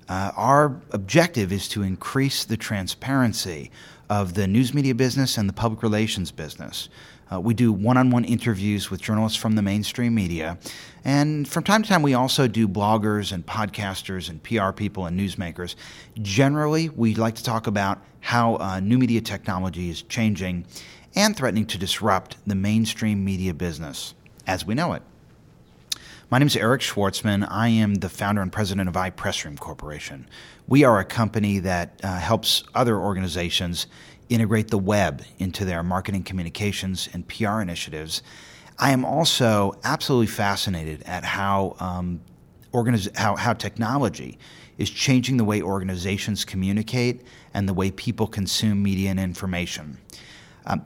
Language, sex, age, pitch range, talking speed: English, male, 40-59, 95-115 Hz, 155 wpm